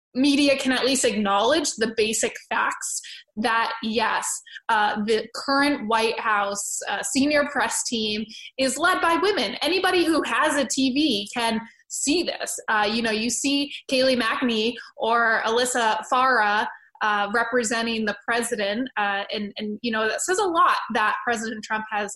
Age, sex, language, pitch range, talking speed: 20-39, female, English, 225-280 Hz, 155 wpm